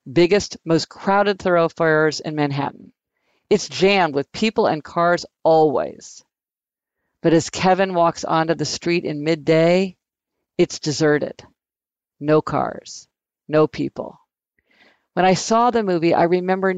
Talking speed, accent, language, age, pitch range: 125 wpm, American, English, 50-69, 155-195 Hz